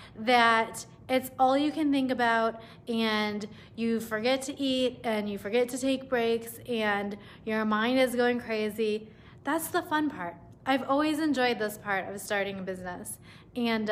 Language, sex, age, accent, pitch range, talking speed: English, female, 20-39, American, 210-250 Hz, 165 wpm